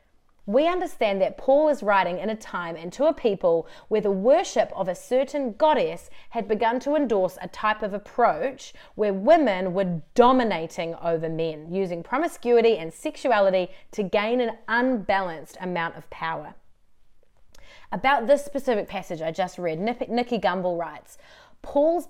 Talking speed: 150 wpm